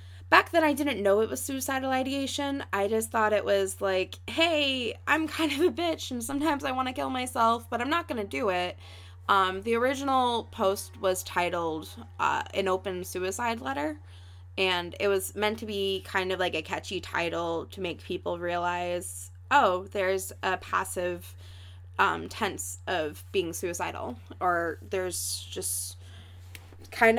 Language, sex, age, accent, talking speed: English, female, 20-39, American, 165 wpm